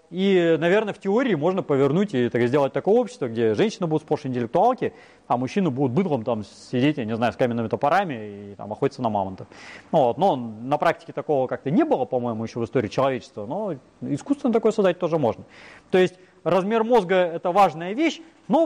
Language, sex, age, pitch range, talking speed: Russian, male, 30-49, 140-205 Hz, 195 wpm